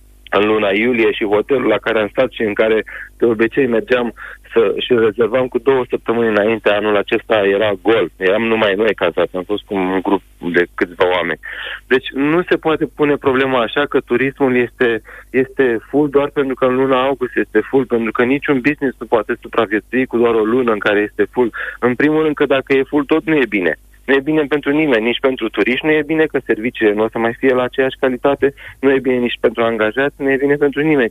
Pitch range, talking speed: 120-150 Hz, 220 wpm